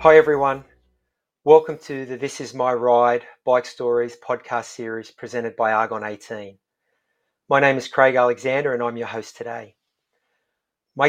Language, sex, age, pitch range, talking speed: English, male, 30-49, 125-145 Hz, 145 wpm